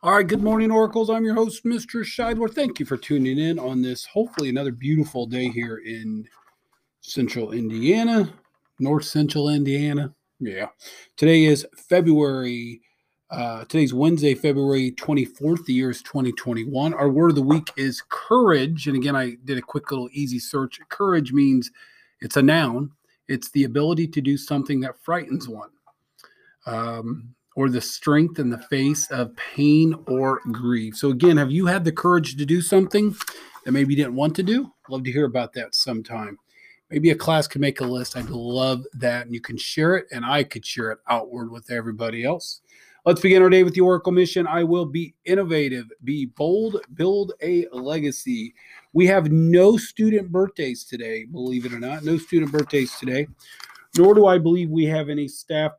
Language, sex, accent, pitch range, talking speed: English, male, American, 125-170 Hz, 180 wpm